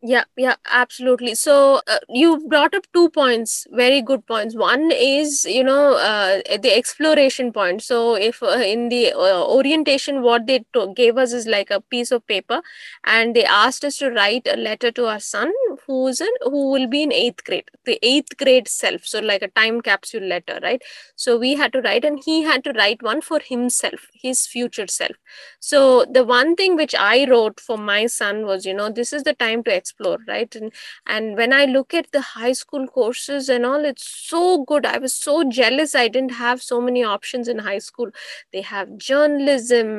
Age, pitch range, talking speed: 20-39, 235-285 Hz, 205 wpm